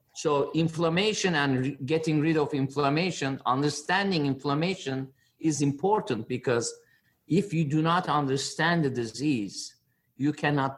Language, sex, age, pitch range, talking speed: English, male, 50-69, 125-155 Hz, 120 wpm